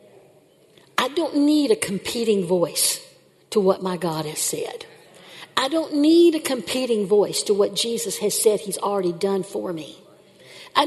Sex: female